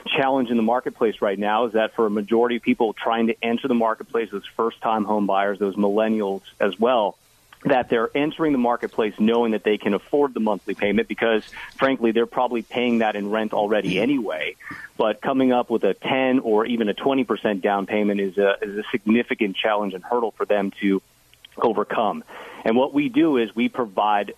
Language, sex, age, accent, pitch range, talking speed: English, male, 40-59, American, 100-125 Hz, 195 wpm